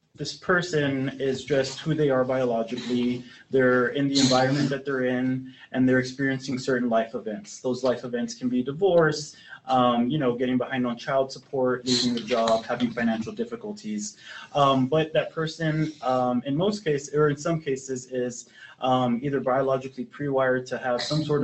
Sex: male